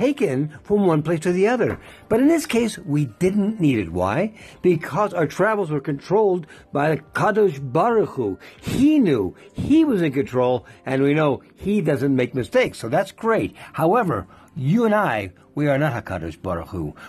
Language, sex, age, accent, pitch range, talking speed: English, male, 60-79, American, 130-195 Hz, 180 wpm